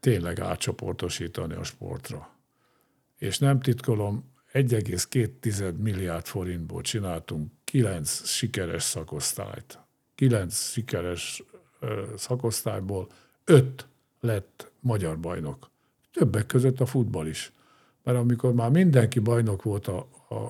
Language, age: Hungarian, 50-69